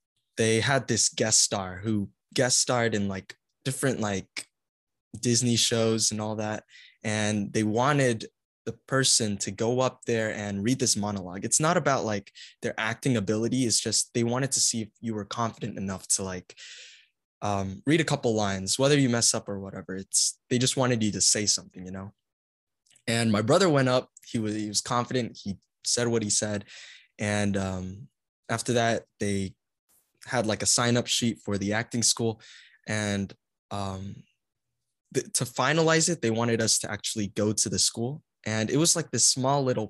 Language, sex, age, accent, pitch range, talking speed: English, male, 10-29, American, 100-120 Hz, 185 wpm